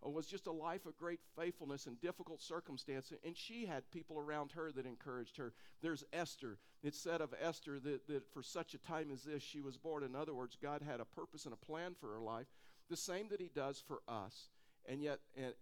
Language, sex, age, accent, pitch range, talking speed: English, male, 50-69, American, 130-160 Hz, 225 wpm